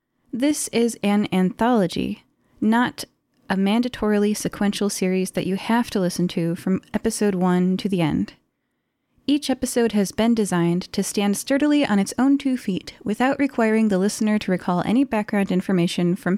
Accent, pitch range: American, 190-255 Hz